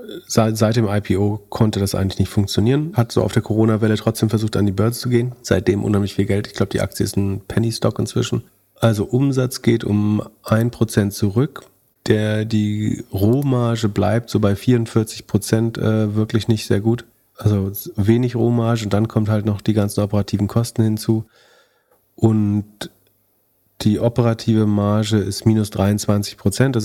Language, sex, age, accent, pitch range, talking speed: German, male, 40-59, German, 105-120 Hz, 160 wpm